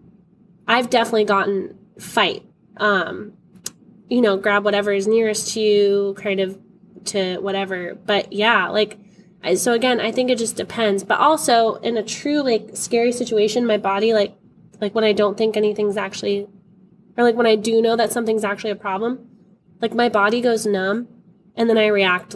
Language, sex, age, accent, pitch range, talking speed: English, female, 10-29, American, 195-230 Hz, 175 wpm